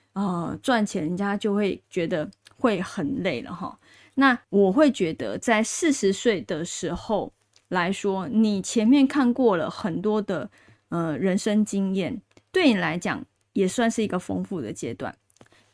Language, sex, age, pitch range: Chinese, female, 20-39, 195-255 Hz